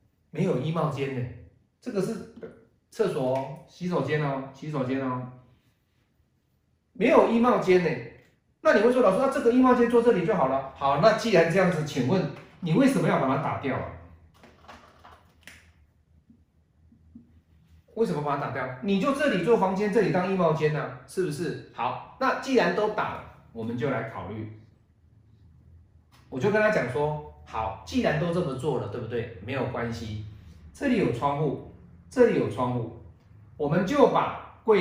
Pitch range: 105-175 Hz